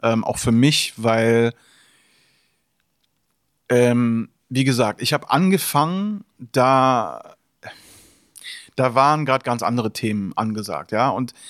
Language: German